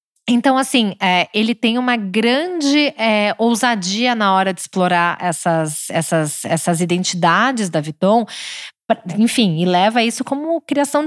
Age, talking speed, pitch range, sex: 20-39, 120 wpm, 180-255 Hz, female